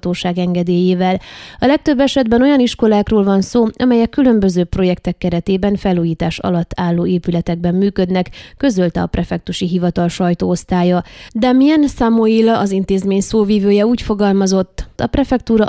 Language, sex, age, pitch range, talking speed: Hungarian, female, 20-39, 180-225 Hz, 120 wpm